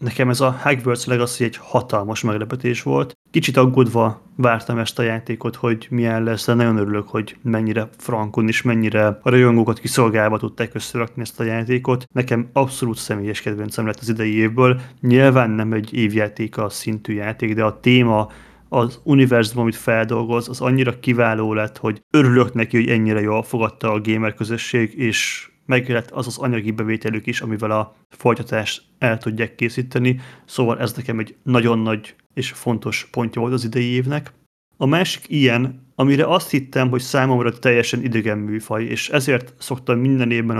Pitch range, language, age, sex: 110-125 Hz, Hungarian, 30-49, male